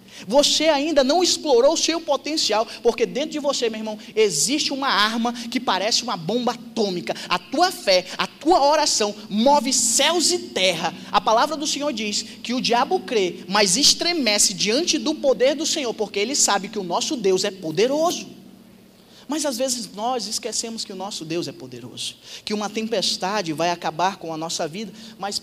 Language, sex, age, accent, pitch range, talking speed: Portuguese, male, 20-39, Brazilian, 190-240 Hz, 180 wpm